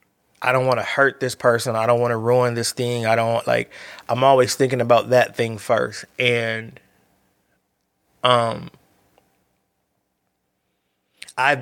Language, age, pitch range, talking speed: English, 30-49, 110-125 Hz, 145 wpm